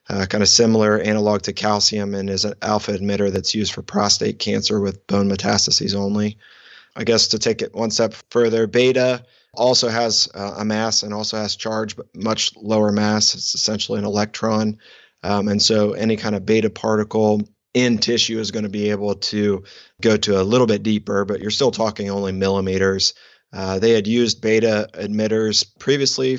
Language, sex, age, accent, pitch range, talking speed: English, male, 30-49, American, 100-110 Hz, 185 wpm